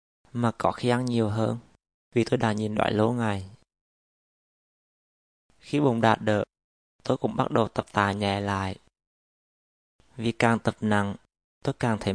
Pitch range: 100-120 Hz